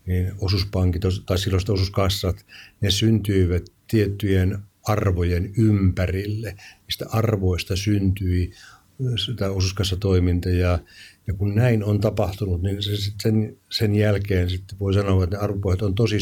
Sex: male